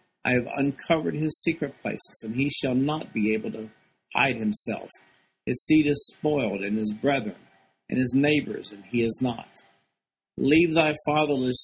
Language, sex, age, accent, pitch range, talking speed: English, male, 50-69, American, 115-140 Hz, 165 wpm